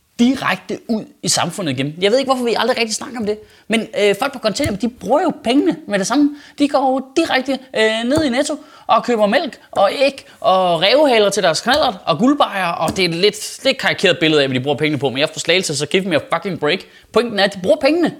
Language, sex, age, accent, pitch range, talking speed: Danish, male, 20-39, native, 155-240 Hz, 250 wpm